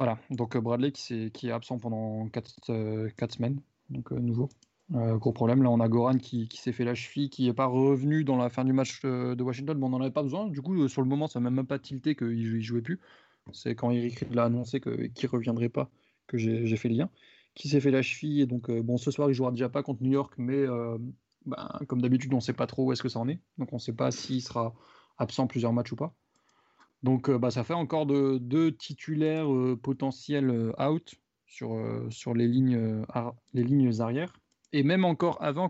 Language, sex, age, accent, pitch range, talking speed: French, male, 20-39, French, 120-140 Hz, 245 wpm